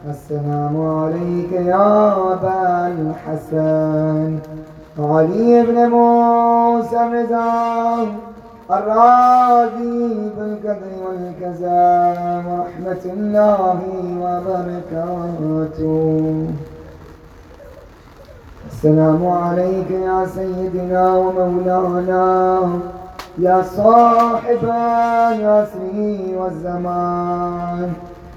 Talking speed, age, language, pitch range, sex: 50 wpm, 20-39, Urdu, 175-215 Hz, male